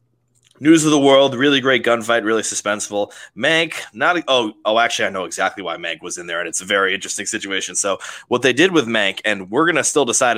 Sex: male